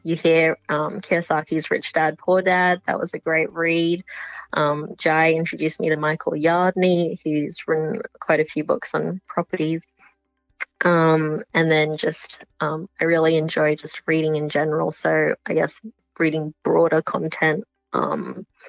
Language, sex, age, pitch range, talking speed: English, female, 20-39, 155-185 Hz, 150 wpm